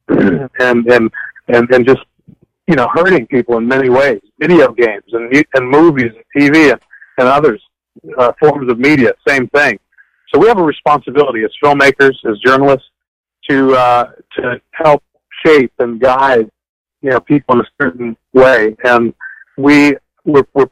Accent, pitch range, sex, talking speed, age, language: American, 120-145 Hz, male, 160 wpm, 50-69, English